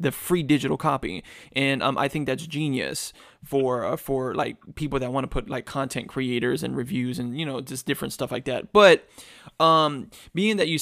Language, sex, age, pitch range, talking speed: English, male, 20-39, 130-155 Hz, 205 wpm